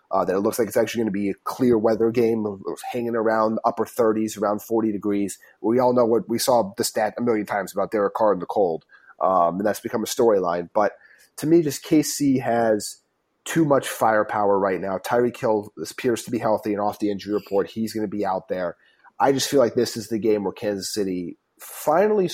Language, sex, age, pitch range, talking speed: English, male, 30-49, 105-130 Hz, 225 wpm